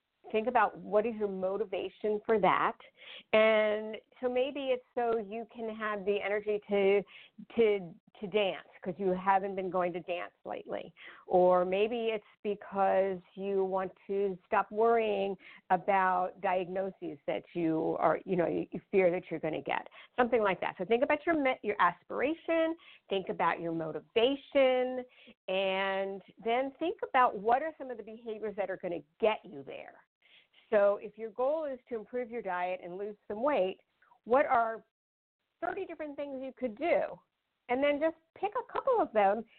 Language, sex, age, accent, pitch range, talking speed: English, female, 50-69, American, 195-265 Hz, 170 wpm